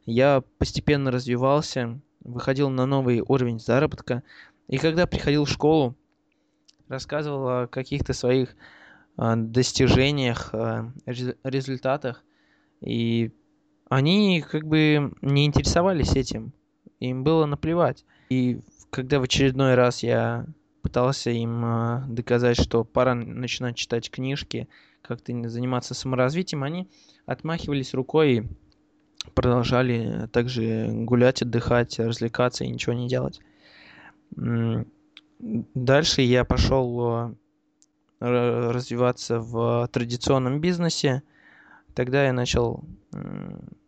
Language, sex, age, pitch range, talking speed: Russian, male, 20-39, 120-145 Hz, 95 wpm